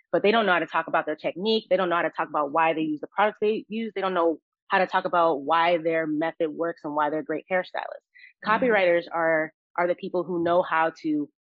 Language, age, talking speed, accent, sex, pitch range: English, 30-49, 260 wpm, American, female, 160-200 Hz